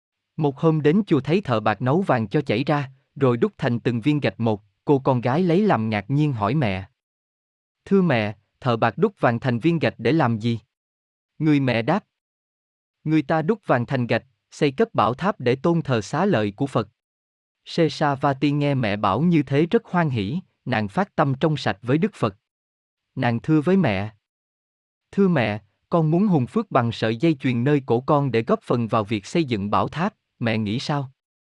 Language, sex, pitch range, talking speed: Vietnamese, male, 115-155 Hz, 205 wpm